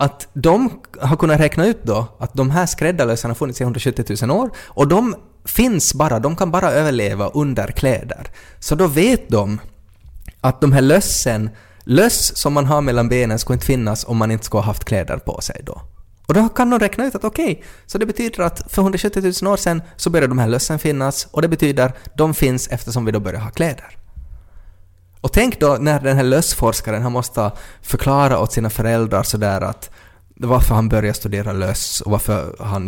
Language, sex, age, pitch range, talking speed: Swedish, male, 20-39, 100-140 Hz, 205 wpm